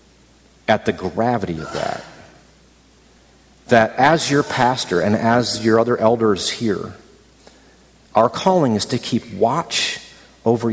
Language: English